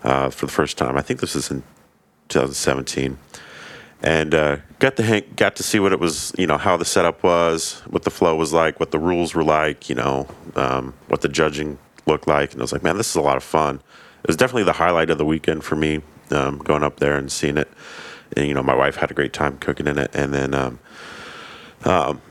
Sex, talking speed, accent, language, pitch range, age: male, 240 wpm, American, English, 75-85 Hz, 30-49